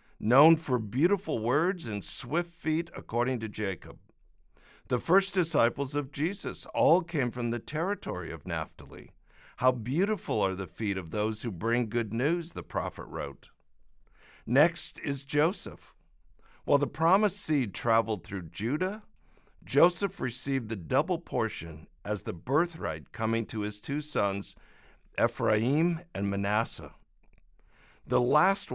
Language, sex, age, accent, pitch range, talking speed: English, male, 60-79, American, 105-155 Hz, 135 wpm